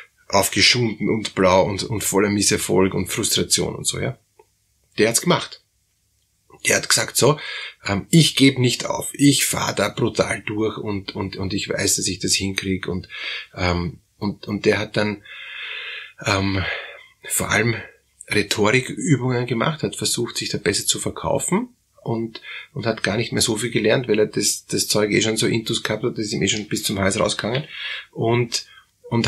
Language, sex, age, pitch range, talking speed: German, male, 30-49, 105-135 Hz, 180 wpm